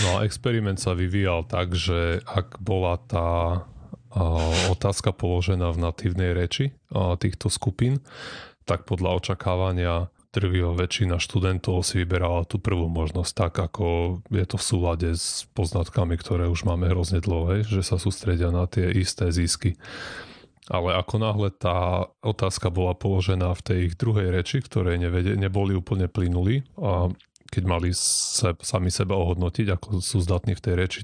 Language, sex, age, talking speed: Slovak, male, 30-49, 145 wpm